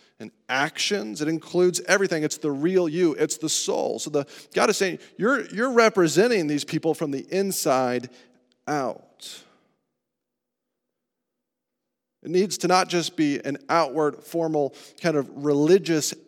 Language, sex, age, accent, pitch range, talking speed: English, male, 40-59, American, 135-175 Hz, 135 wpm